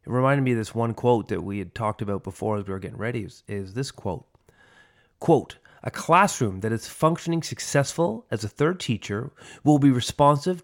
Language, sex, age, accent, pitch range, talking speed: English, male, 30-49, American, 105-135 Hz, 205 wpm